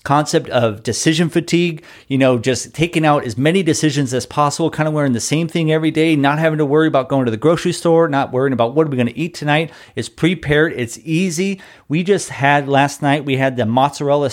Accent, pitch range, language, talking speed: American, 115-155 Hz, English, 230 wpm